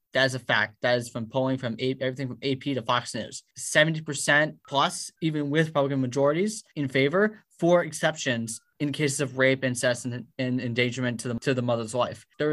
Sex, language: male, English